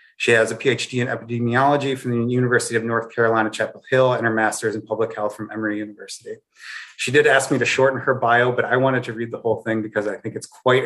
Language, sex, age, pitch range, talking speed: English, male, 30-49, 110-130 Hz, 245 wpm